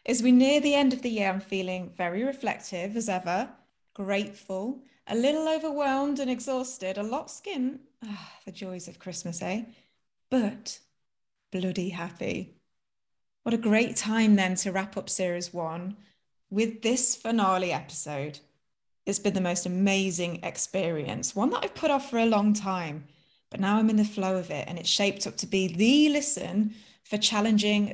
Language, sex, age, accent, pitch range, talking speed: English, female, 20-39, British, 175-240 Hz, 170 wpm